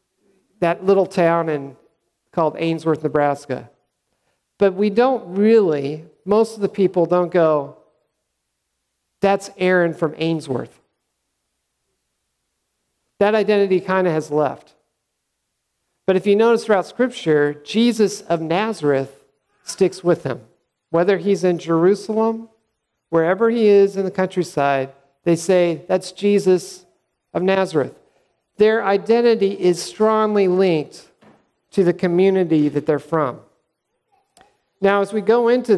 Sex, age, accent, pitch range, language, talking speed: male, 50-69, American, 165-205 Hz, English, 115 wpm